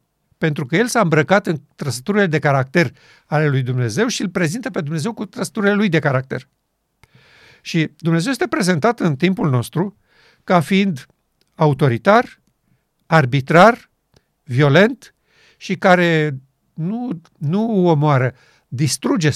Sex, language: male, Romanian